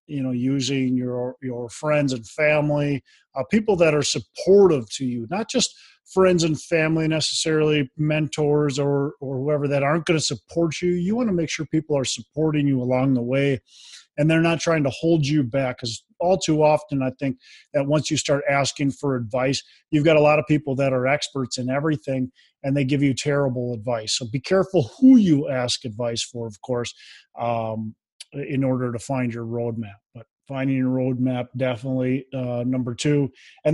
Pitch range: 130-160 Hz